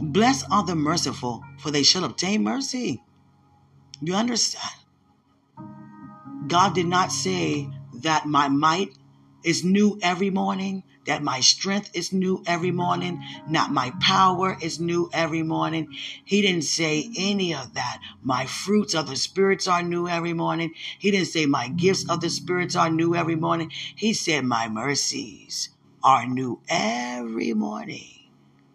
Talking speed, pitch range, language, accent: 150 wpm, 140-180 Hz, English, American